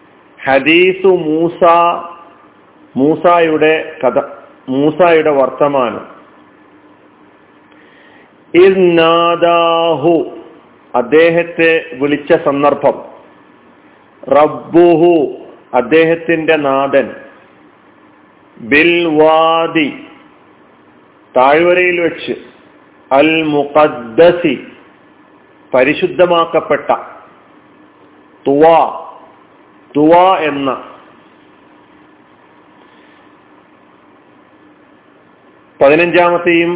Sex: male